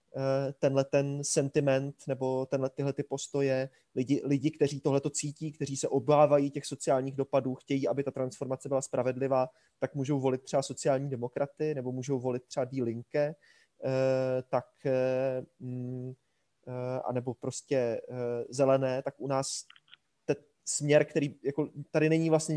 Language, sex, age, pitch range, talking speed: Czech, male, 20-39, 130-150 Hz, 135 wpm